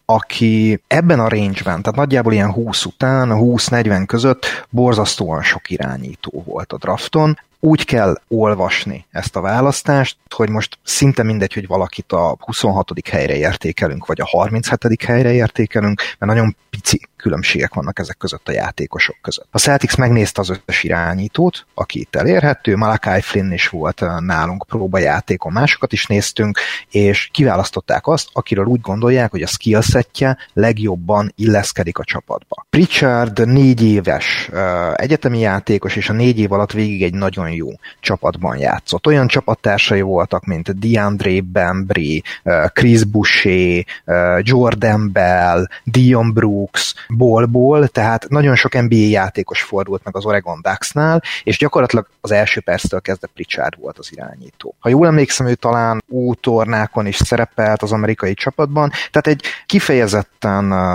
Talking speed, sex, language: 140 wpm, male, Hungarian